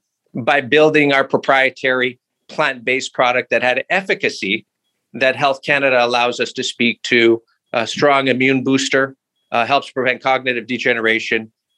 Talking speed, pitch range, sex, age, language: 130 wpm, 135-175 Hz, male, 50-69, English